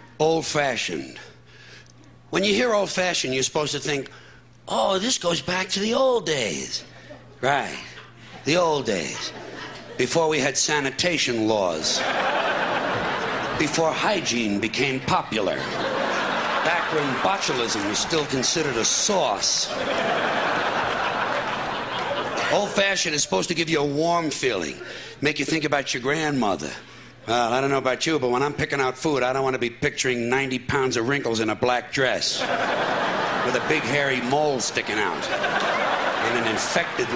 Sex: male